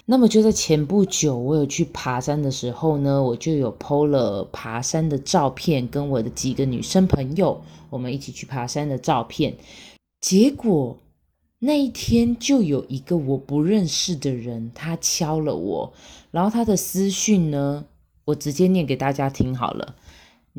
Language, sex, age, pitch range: Chinese, female, 20-39, 135-190 Hz